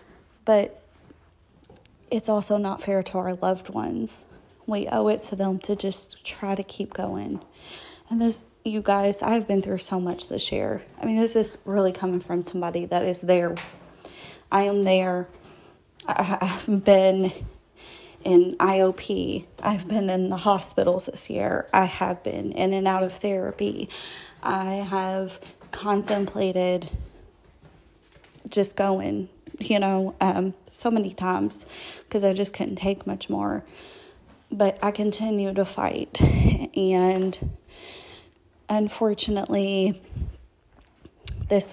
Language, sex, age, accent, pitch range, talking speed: English, female, 20-39, American, 185-205 Hz, 130 wpm